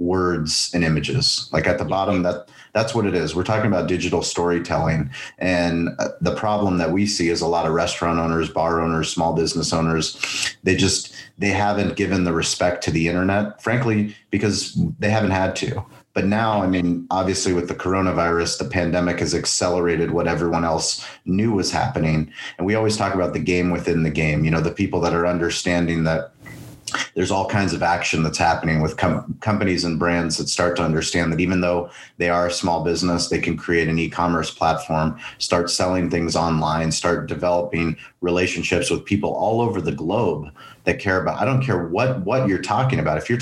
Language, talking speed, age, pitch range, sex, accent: English, 195 wpm, 30-49, 85-100 Hz, male, American